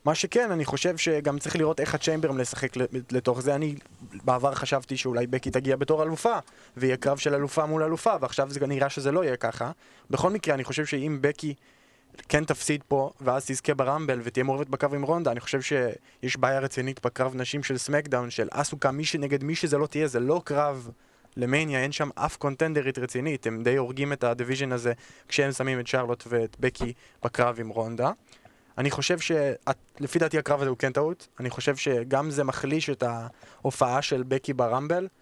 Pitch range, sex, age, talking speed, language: 130-145 Hz, male, 20-39, 165 wpm, Hebrew